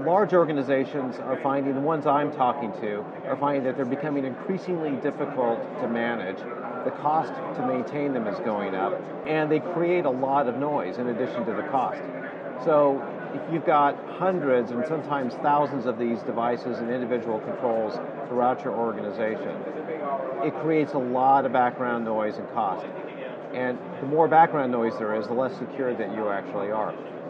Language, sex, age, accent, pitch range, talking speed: English, male, 50-69, American, 125-155 Hz, 170 wpm